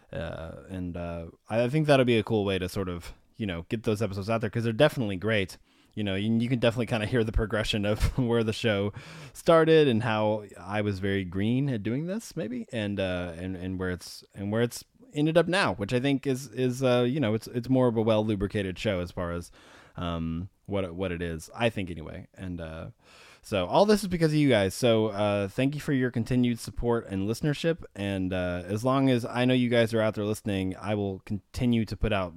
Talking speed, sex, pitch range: 240 wpm, male, 95-125 Hz